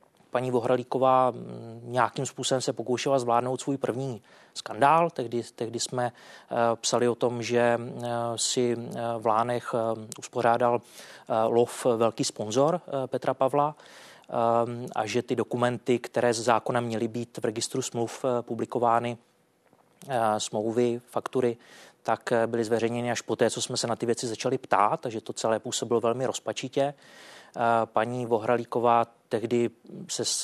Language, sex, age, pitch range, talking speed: Czech, male, 20-39, 115-125 Hz, 130 wpm